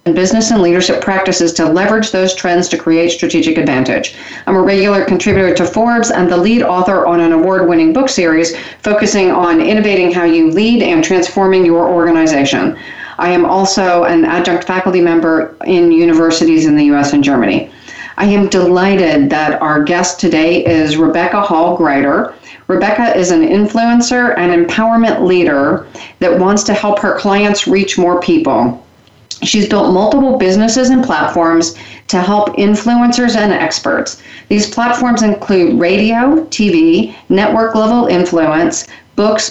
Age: 40-59